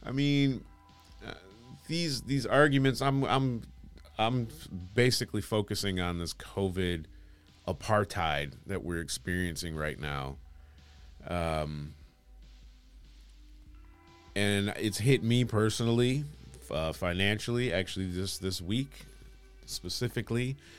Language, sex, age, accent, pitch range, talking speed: English, male, 30-49, American, 80-105 Hz, 95 wpm